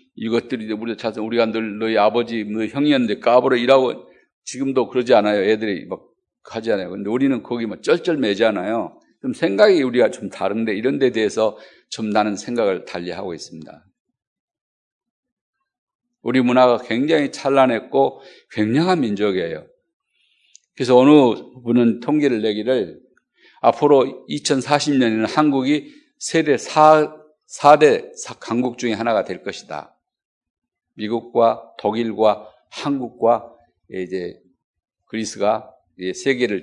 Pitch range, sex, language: 110-155 Hz, male, Korean